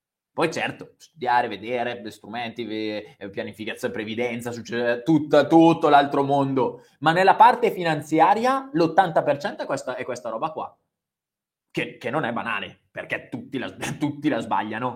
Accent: native